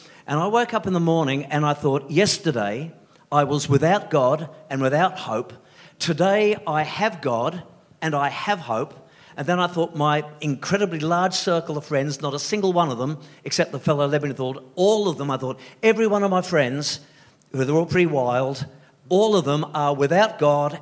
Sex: male